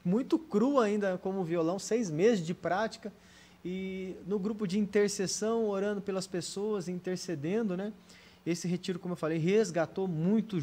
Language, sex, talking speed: Portuguese, male, 145 wpm